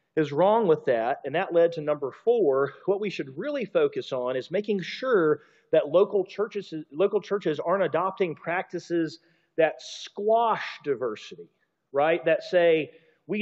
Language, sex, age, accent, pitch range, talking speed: English, male, 40-59, American, 150-200 Hz, 150 wpm